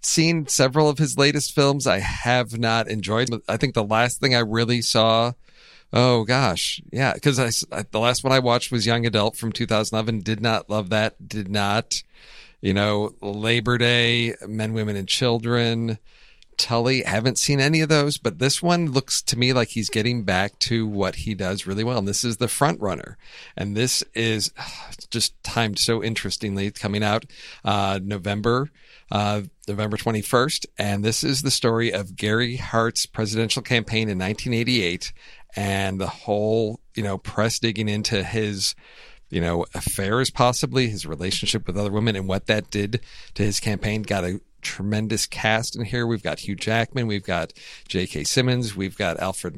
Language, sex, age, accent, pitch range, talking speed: English, male, 40-59, American, 100-120 Hz, 175 wpm